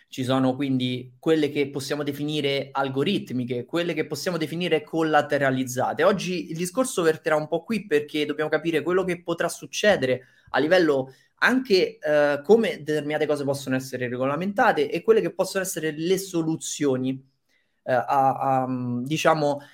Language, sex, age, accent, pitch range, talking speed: Italian, male, 20-39, native, 135-180 Hz, 145 wpm